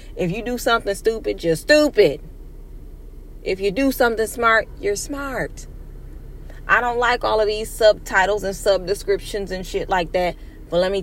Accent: American